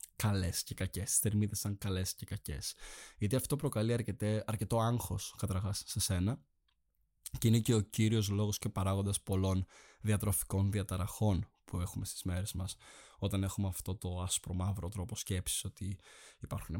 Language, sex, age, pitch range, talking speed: Greek, male, 20-39, 100-115 Hz, 150 wpm